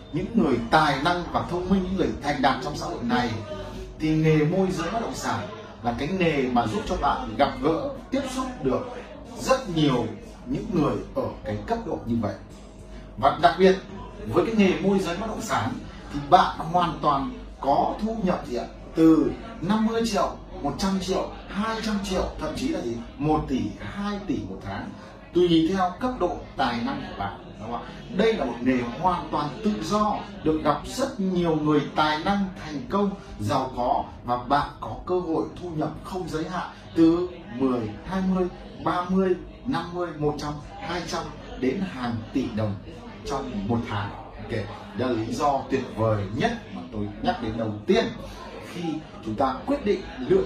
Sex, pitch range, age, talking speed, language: male, 120-190 Hz, 30-49, 180 wpm, Vietnamese